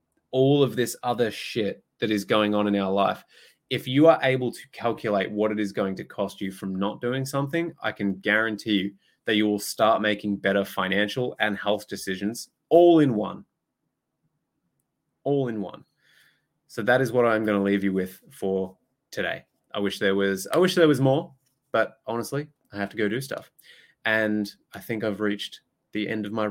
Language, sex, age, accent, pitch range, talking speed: English, male, 20-39, Australian, 100-125 Hz, 195 wpm